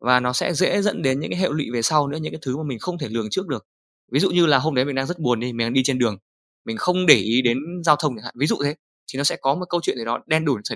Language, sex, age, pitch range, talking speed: Vietnamese, male, 20-39, 120-160 Hz, 340 wpm